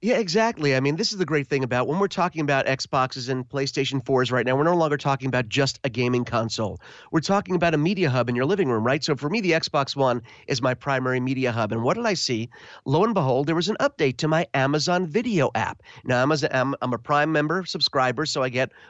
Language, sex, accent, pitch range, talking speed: English, male, American, 130-160 Hz, 250 wpm